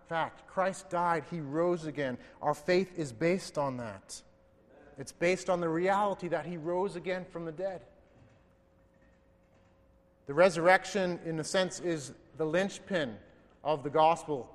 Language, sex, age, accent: English, male, 30-49, American